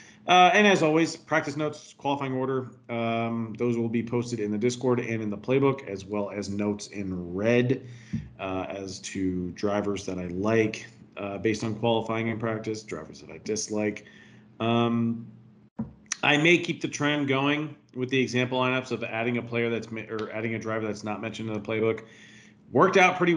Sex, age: male, 40-59